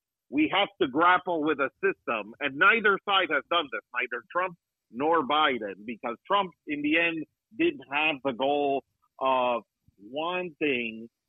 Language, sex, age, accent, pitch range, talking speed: English, male, 50-69, American, 140-185 Hz, 150 wpm